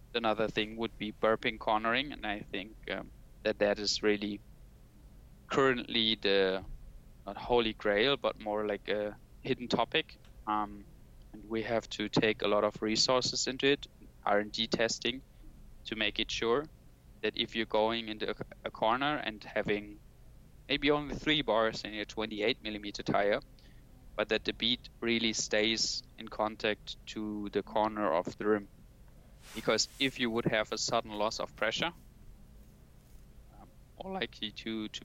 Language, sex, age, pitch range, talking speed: English, male, 20-39, 105-115 Hz, 155 wpm